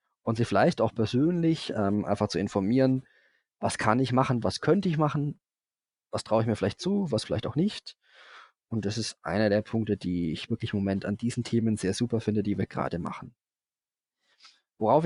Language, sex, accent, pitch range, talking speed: German, male, German, 105-125 Hz, 195 wpm